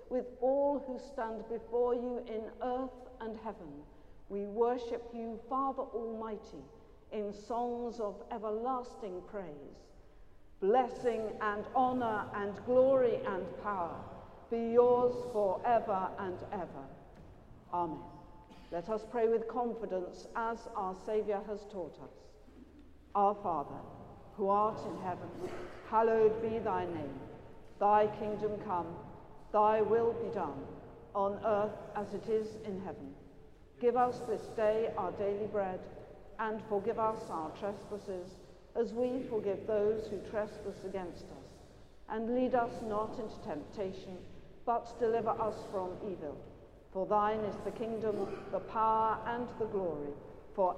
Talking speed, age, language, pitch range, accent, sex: 130 wpm, 50-69, English, 195-230 Hz, British, female